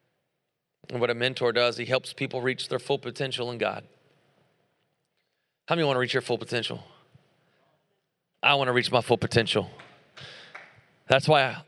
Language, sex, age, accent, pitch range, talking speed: English, male, 30-49, American, 130-170 Hz, 160 wpm